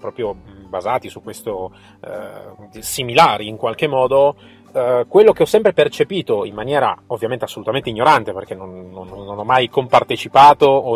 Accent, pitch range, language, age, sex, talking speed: native, 110-165 Hz, Italian, 30-49, male, 155 wpm